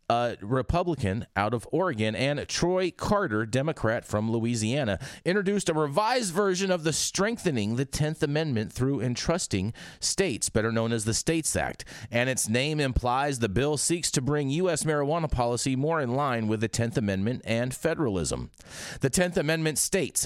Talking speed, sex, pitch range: 165 wpm, male, 115-180 Hz